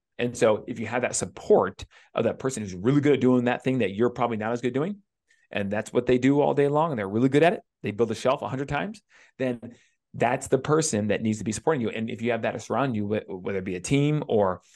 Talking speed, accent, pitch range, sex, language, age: 275 wpm, American, 105-130 Hz, male, English, 30-49